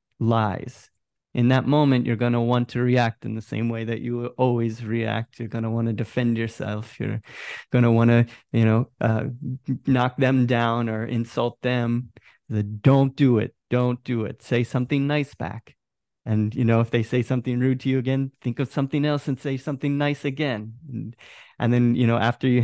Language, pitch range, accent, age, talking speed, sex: English, 115-135 Hz, American, 30-49, 200 wpm, male